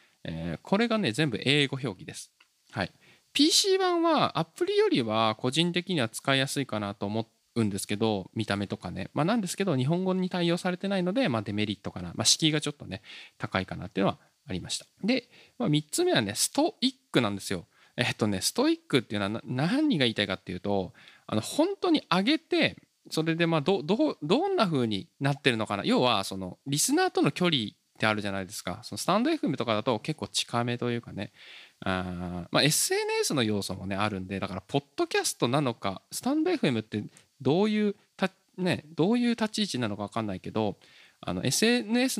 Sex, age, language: male, 20-39, Japanese